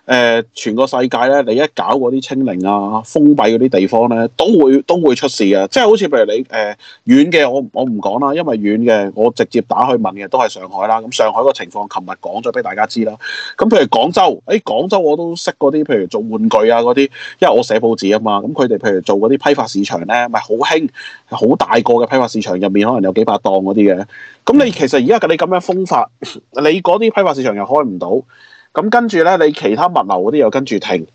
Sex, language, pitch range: male, Chinese, 105-150 Hz